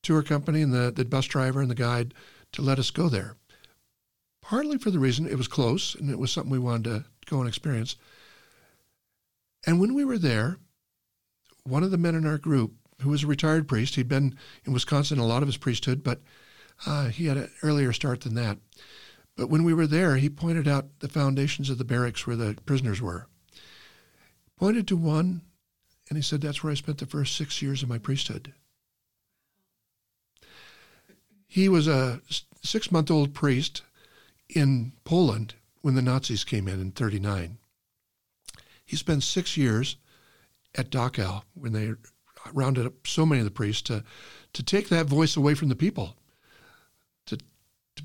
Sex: male